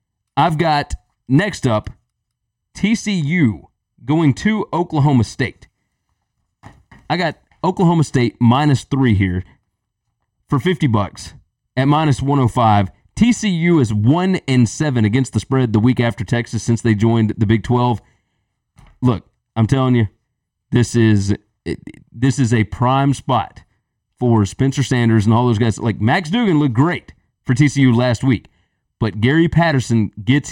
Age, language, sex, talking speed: 30-49, English, male, 145 wpm